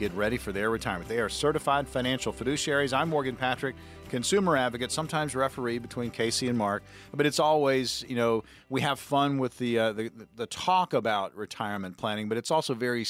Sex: male